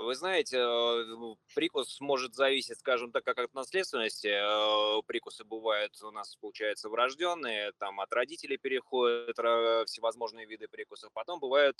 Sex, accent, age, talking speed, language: male, native, 20-39, 125 wpm, Russian